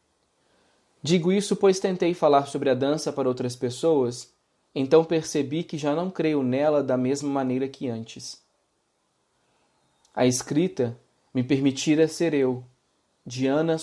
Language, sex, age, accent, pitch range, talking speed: Portuguese, male, 20-39, Brazilian, 130-180 Hz, 130 wpm